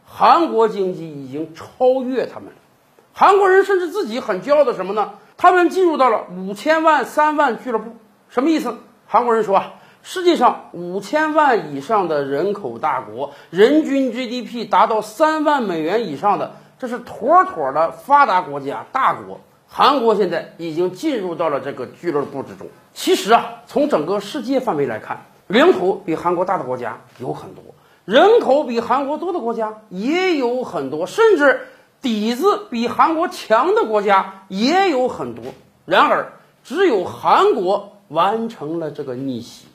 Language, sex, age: Chinese, male, 50-69